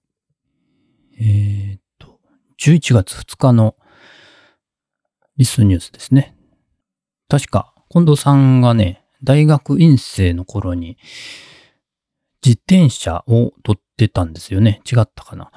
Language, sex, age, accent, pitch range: Japanese, male, 40-59, native, 90-120 Hz